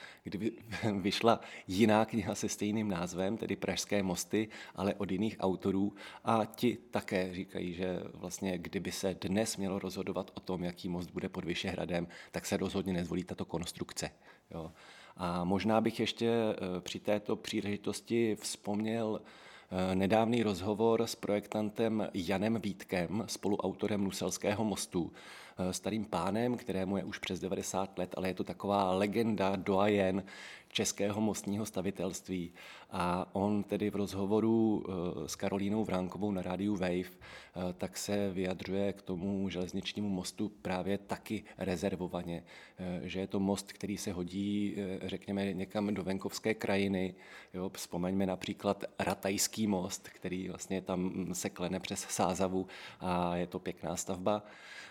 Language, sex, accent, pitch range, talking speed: Czech, male, native, 95-105 Hz, 135 wpm